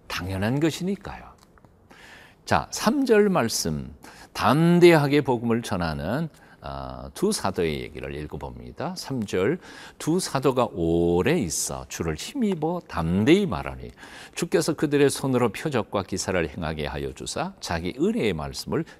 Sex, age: male, 50-69